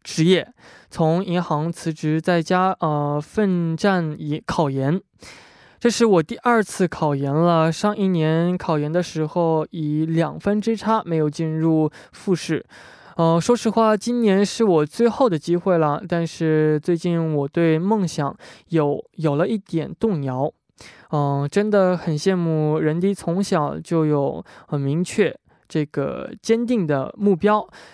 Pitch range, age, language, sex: 155-205 Hz, 20-39, Korean, male